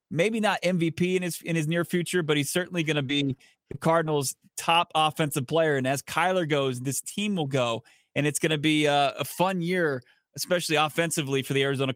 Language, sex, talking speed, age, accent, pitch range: English, male, 200 wpm, 20-39, American, 145-180 Hz